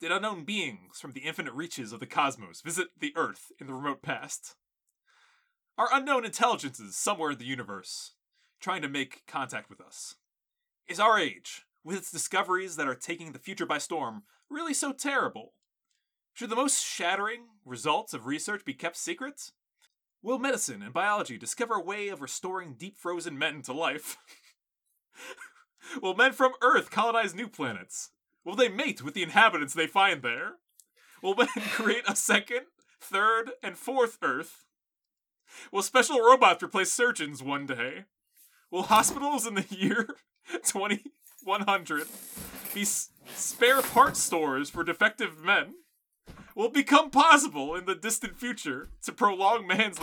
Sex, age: male, 30-49